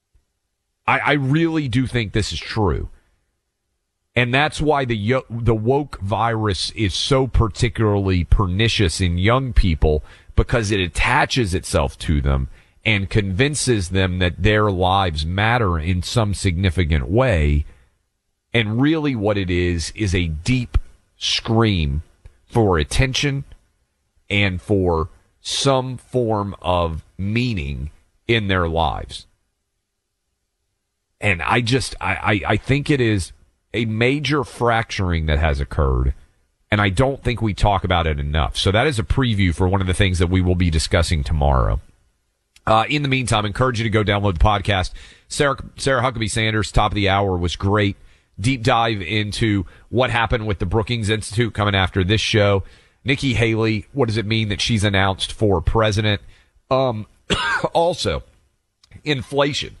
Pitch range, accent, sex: 90-115 Hz, American, male